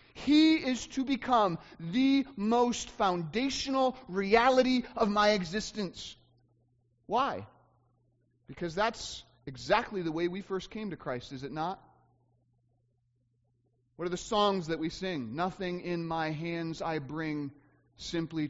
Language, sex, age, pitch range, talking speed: English, male, 30-49, 155-260 Hz, 125 wpm